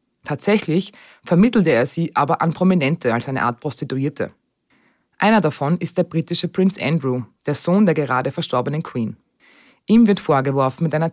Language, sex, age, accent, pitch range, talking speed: German, female, 20-39, German, 130-180 Hz, 155 wpm